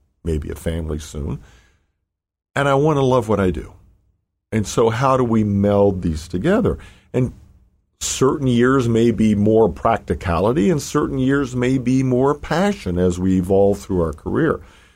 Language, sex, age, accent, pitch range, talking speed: English, male, 50-69, American, 90-130 Hz, 160 wpm